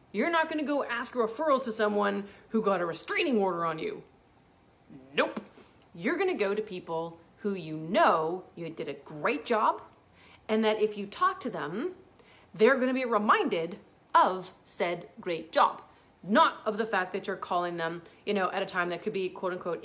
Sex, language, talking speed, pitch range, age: female, English, 195 wpm, 195-275 Hz, 30-49